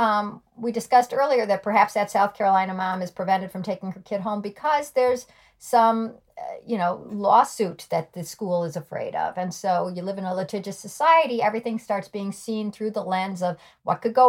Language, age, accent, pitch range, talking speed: English, 50-69, American, 190-245 Hz, 205 wpm